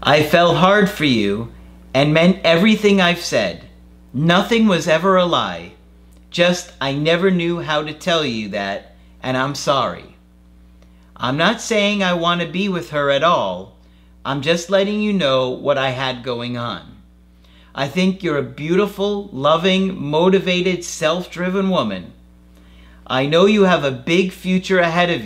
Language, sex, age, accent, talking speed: English, male, 40-59, American, 155 wpm